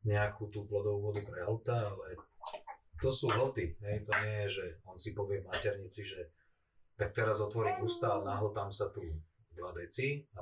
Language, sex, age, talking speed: Slovak, male, 30-49, 180 wpm